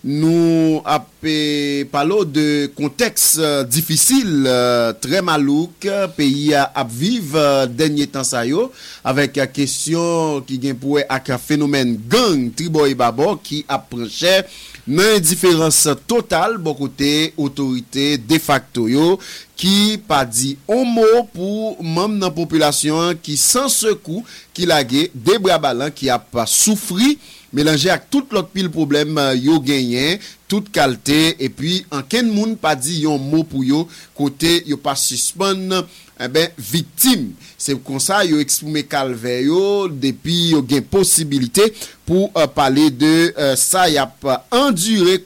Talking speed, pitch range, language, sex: 140 wpm, 140-185 Hz, English, male